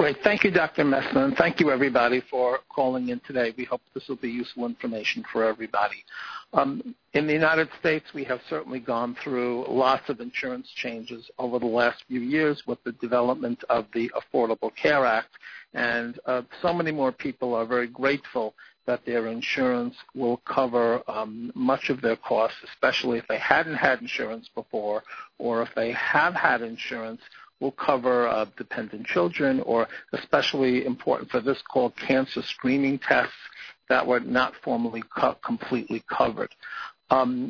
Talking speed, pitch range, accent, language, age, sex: 165 wpm, 120-135 Hz, American, English, 50-69, male